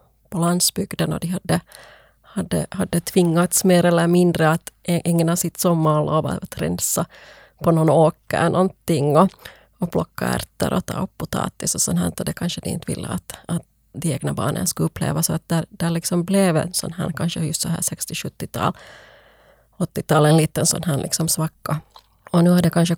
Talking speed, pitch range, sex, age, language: 180 wpm, 155-180 Hz, female, 30-49, Swedish